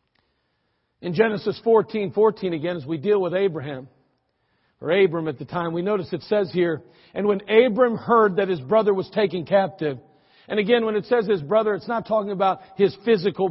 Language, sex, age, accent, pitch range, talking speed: English, male, 50-69, American, 185-225 Hz, 190 wpm